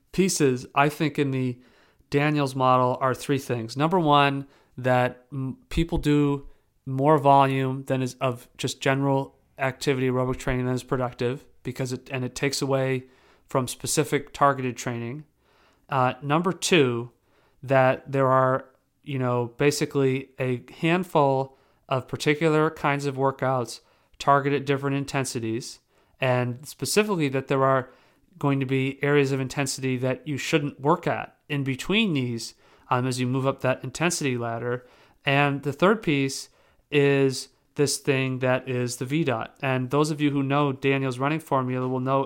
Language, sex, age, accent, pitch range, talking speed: English, male, 40-59, American, 130-145 Hz, 150 wpm